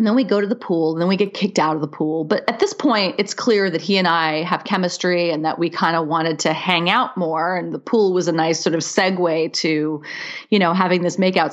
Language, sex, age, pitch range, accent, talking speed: English, female, 30-49, 170-225 Hz, American, 275 wpm